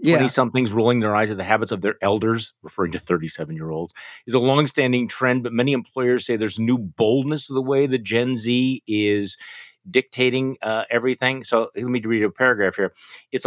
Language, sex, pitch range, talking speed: English, male, 110-135 Hz, 185 wpm